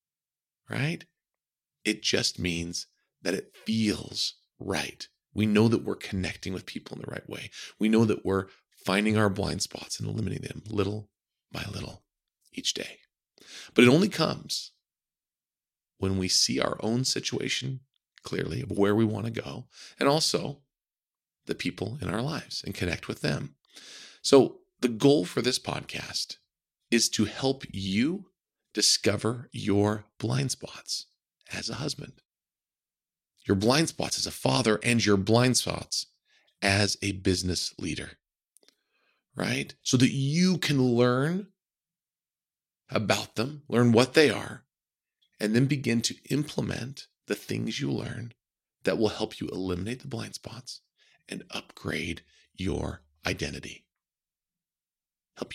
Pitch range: 100-130 Hz